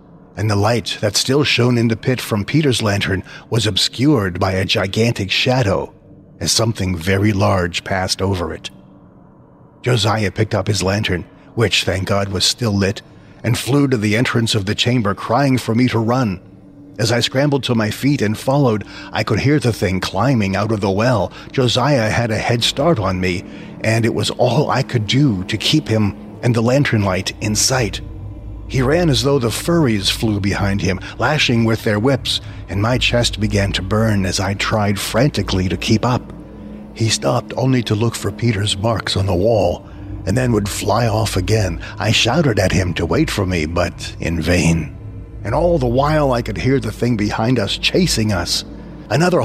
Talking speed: 190 wpm